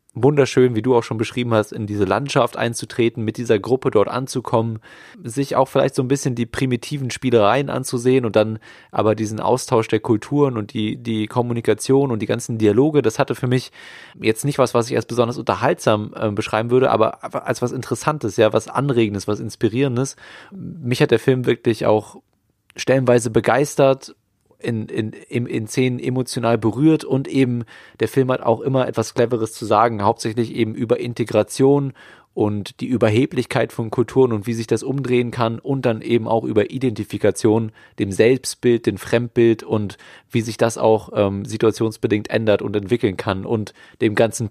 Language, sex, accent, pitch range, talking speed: German, male, German, 110-125 Hz, 175 wpm